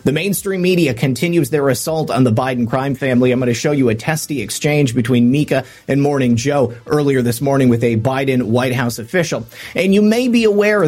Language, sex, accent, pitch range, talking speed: English, male, American, 130-170 Hz, 210 wpm